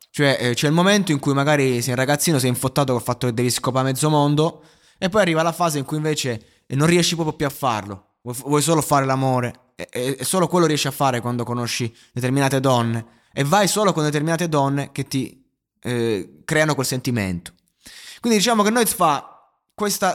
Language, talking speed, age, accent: Italian, 205 wpm, 20-39, native